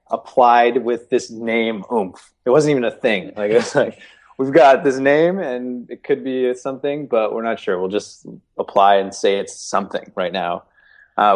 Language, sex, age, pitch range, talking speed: English, male, 20-39, 95-115 Hz, 190 wpm